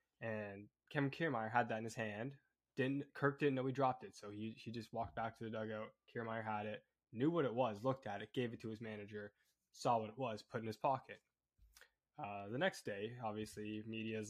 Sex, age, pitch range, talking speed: male, 10-29, 105-125 Hz, 225 wpm